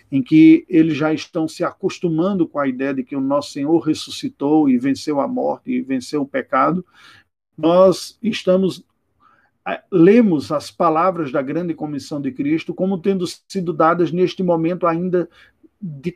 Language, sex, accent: Portuguese, male, Brazilian